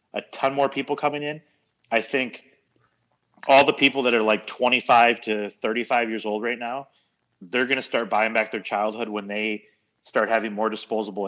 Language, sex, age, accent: English, male, 30-49, American